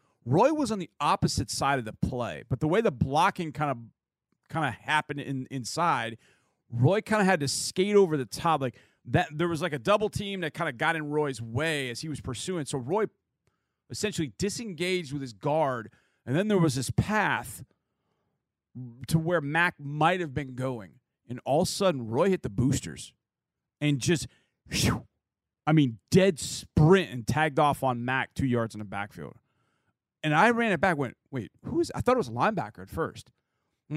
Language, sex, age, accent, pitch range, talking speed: English, male, 40-59, American, 130-185 Hz, 200 wpm